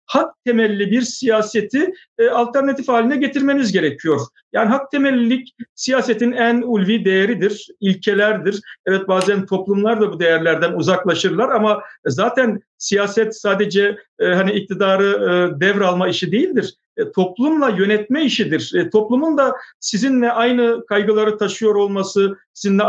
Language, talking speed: Turkish, 125 wpm